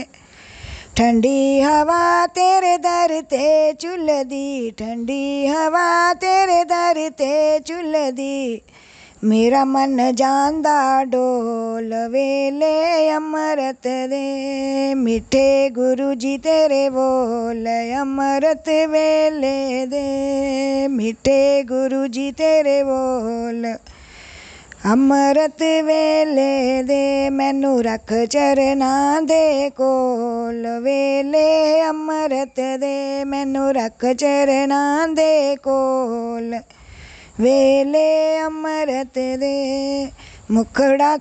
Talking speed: 65 wpm